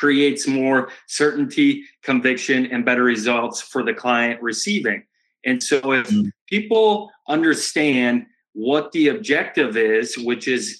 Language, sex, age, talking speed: English, male, 30-49, 120 wpm